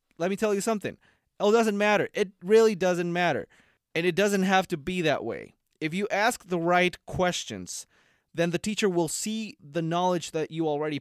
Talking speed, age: 195 wpm, 20-39